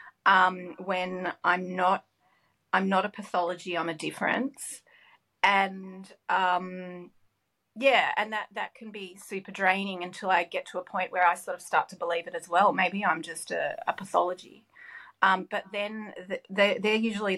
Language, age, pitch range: English, 30-49, 180-215 Hz